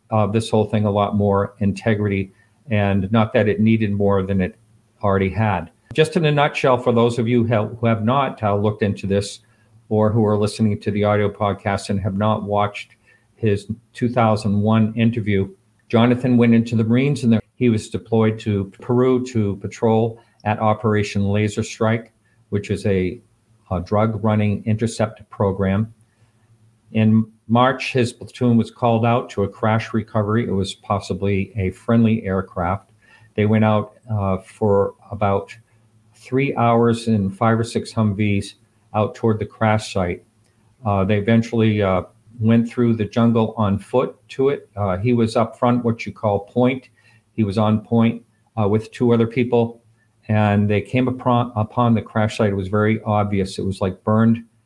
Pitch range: 105-115 Hz